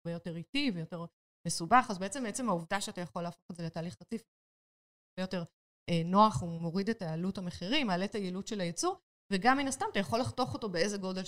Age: 20-39